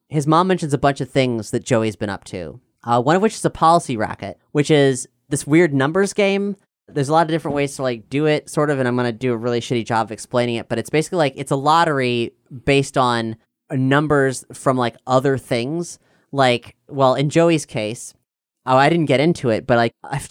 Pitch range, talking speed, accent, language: 120-145 Hz, 230 wpm, American, English